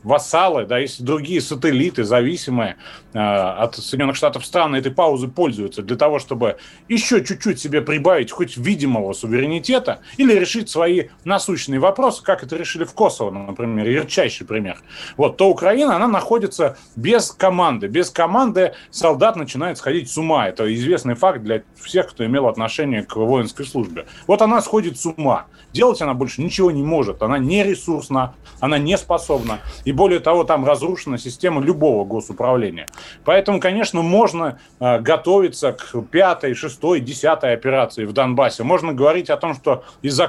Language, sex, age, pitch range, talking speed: Russian, male, 30-49, 125-185 Hz, 155 wpm